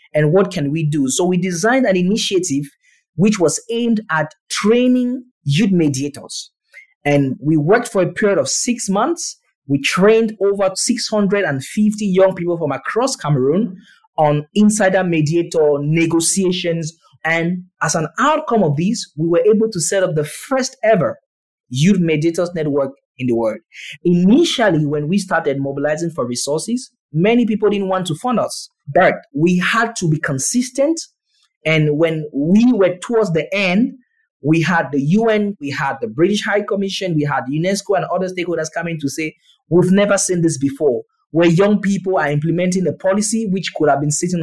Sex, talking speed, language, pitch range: male, 165 wpm, English, 155-205 Hz